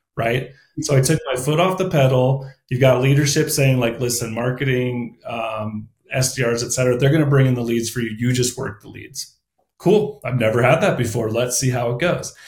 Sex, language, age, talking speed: male, English, 30-49, 215 wpm